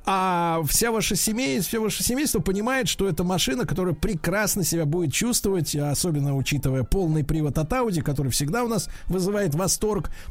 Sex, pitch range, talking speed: male, 160-215 Hz, 155 wpm